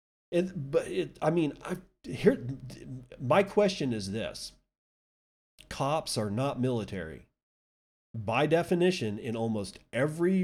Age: 40-59